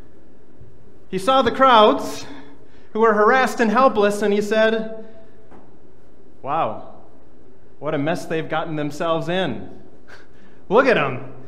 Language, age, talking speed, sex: English, 30-49, 120 wpm, male